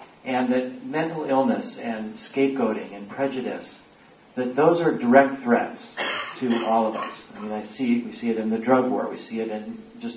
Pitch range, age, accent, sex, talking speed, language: 120-165 Hz, 40-59, American, male, 195 wpm, English